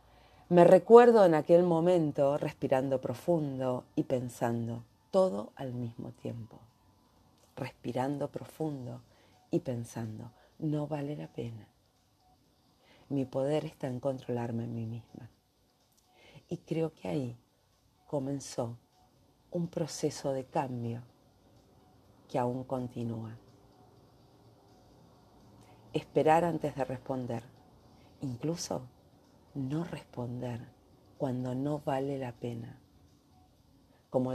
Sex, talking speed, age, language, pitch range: female, 95 wpm, 40-59, Spanish, 120-150 Hz